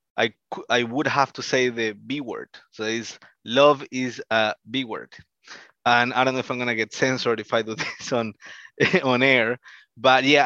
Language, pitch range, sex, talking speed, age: English, 115-145 Hz, male, 195 wpm, 20-39